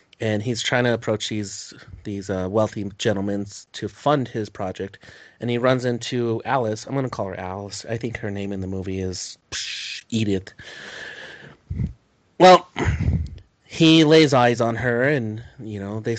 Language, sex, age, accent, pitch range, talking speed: English, male, 30-49, American, 105-130 Hz, 165 wpm